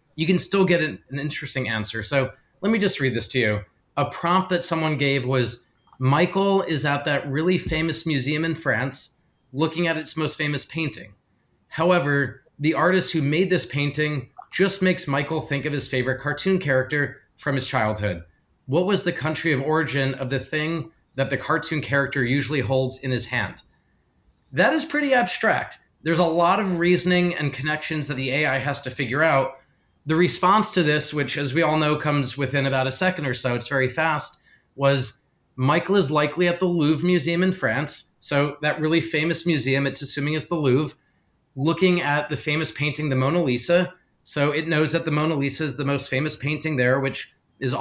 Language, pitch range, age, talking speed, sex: English, 135-165 Hz, 30-49, 195 wpm, male